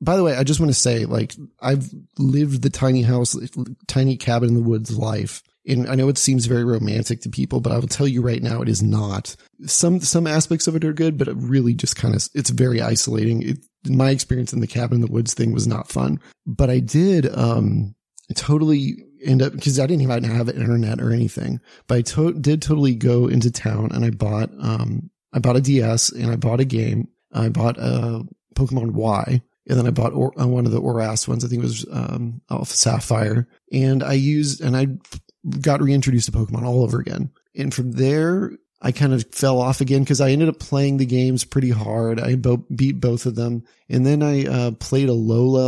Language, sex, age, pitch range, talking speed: English, male, 30-49, 115-135 Hz, 220 wpm